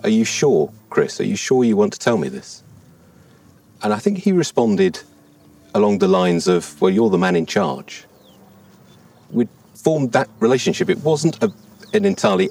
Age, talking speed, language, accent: 40-59, 175 wpm, English, British